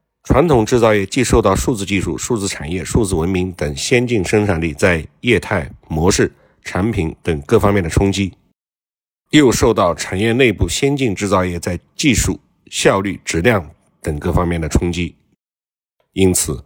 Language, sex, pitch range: Chinese, male, 85-110 Hz